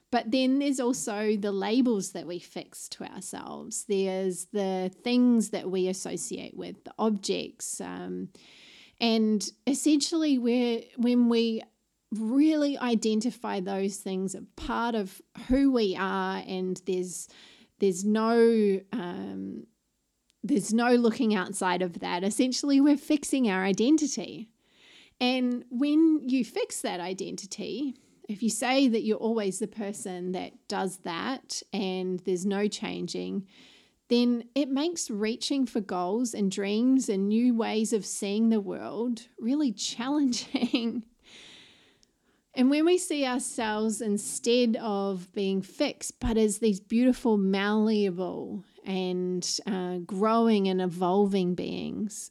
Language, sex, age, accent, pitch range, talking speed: English, female, 30-49, Australian, 195-245 Hz, 125 wpm